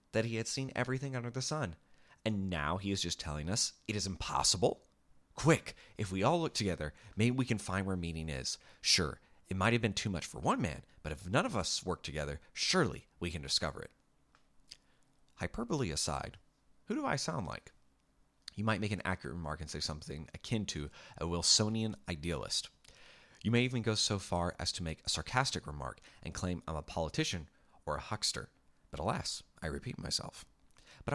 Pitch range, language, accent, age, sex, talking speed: 80-110 Hz, English, American, 30-49, male, 195 wpm